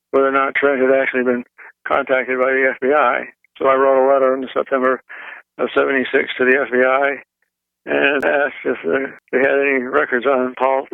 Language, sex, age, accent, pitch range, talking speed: English, male, 60-79, American, 125-140 Hz, 175 wpm